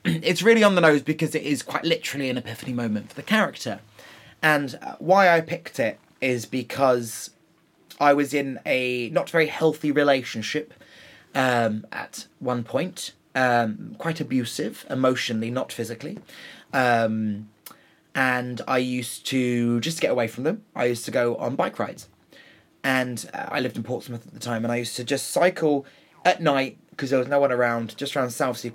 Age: 20-39